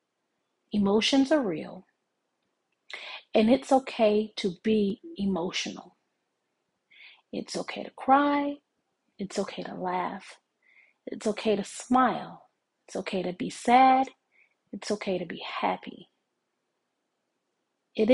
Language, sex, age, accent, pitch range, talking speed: English, female, 30-49, American, 200-270 Hz, 105 wpm